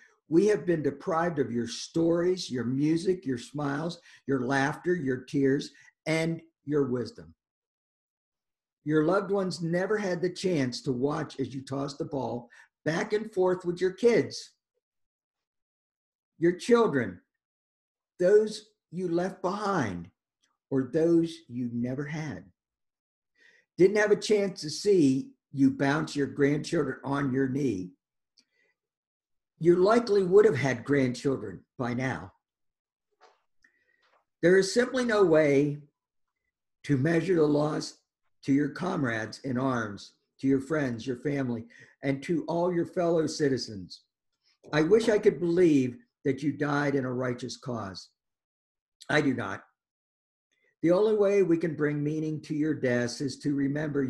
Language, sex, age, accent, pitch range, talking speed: English, male, 50-69, American, 135-180 Hz, 135 wpm